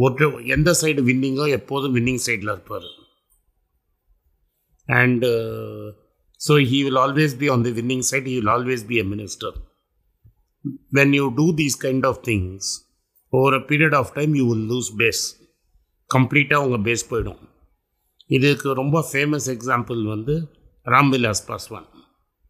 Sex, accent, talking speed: male, native, 135 wpm